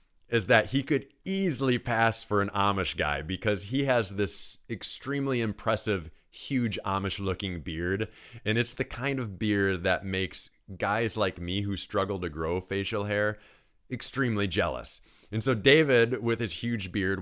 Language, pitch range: English, 90-110 Hz